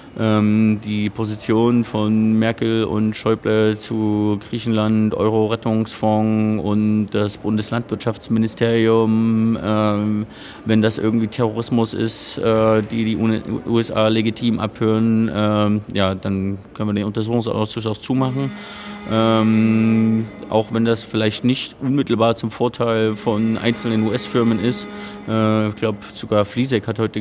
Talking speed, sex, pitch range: 110 wpm, male, 105-115 Hz